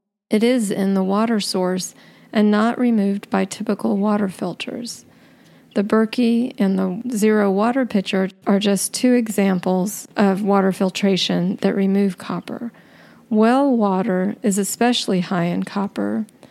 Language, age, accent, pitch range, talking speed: English, 40-59, American, 190-225 Hz, 135 wpm